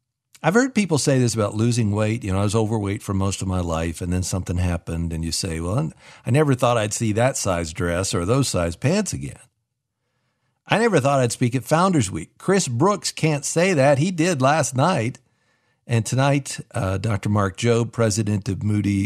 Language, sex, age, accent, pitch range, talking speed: English, male, 50-69, American, 100-130 Hz, 205 wpm